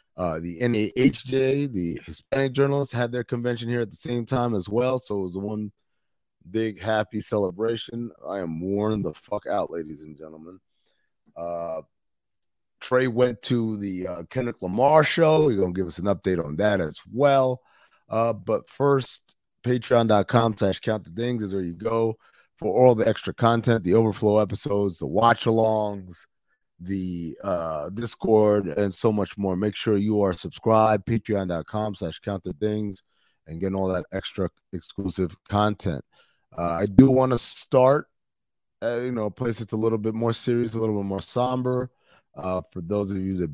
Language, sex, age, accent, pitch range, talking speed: English, male, 30-49, American, 95-115 Hz, 170 wpm